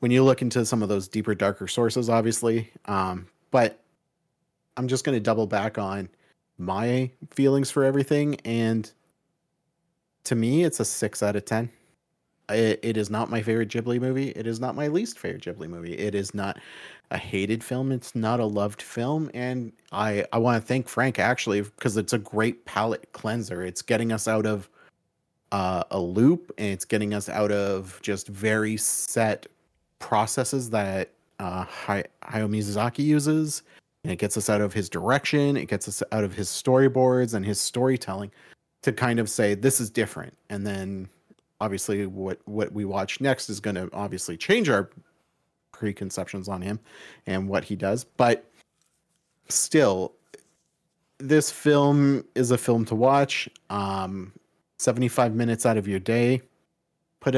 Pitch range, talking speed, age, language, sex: 105-130 Hz, 165 wpm, 30-49, English, male